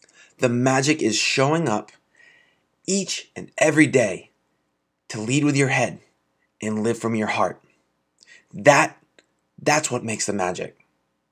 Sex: male